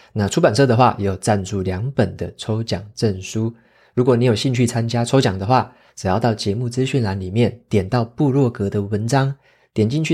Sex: male